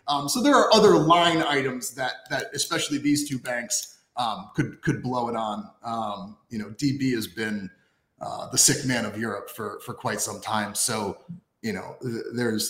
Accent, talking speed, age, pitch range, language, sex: American, 195 wpm, 30-49, 110-150 Hz, English, male